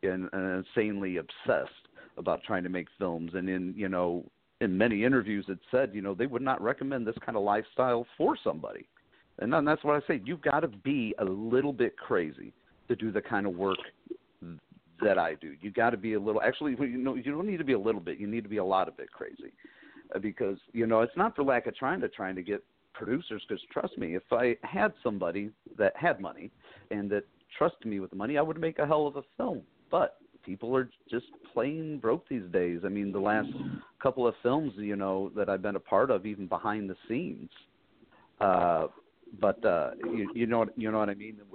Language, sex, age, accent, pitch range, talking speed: English, male, 50-69, American, 95-120 Hz, 225 wpm